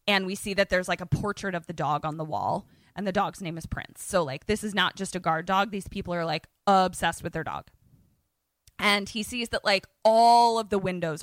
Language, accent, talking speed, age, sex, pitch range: English, American, 245 wpm, 20-39, female, 175-220 Hz